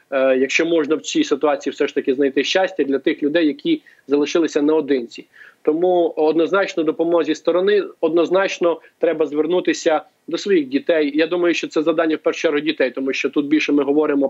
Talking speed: 170 wpm